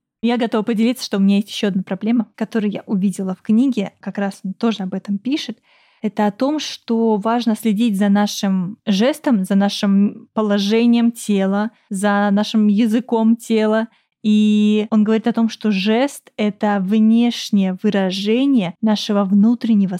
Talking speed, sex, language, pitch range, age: 155 wpm, female, Russian, 205-230 Hz, 20-39